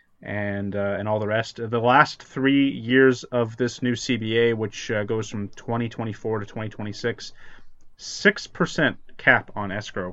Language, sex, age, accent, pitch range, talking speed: English, male, 30-49, American, 105-120 Hz, 140 wpm